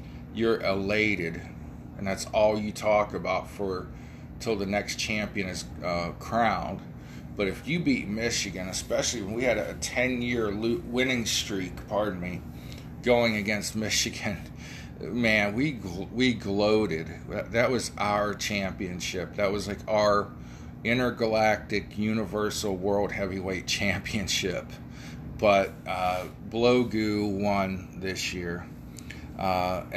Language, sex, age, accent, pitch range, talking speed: English, male, 40-59, American, 90-115 Hz, 125 wpm